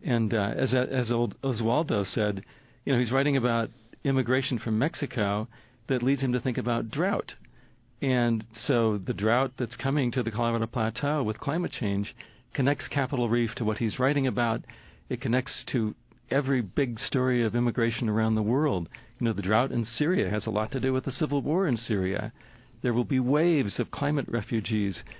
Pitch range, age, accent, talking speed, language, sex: 110-130 Hz, 50-69, American, 185 wpm, English, male